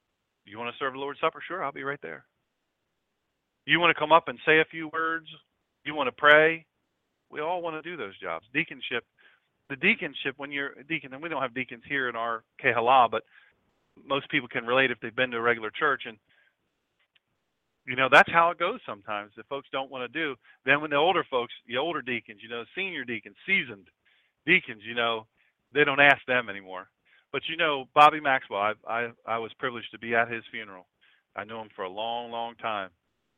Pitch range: 115-165 Hz